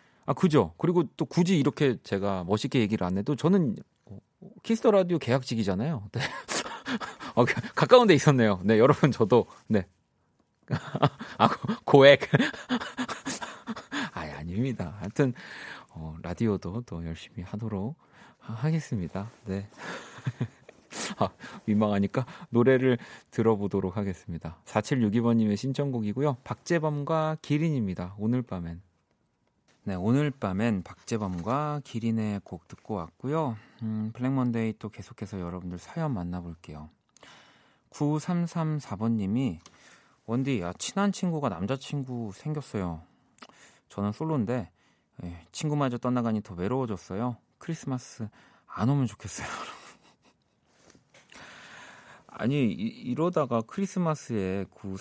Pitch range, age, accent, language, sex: 95-145 Hz, 30-49, native, Korean, male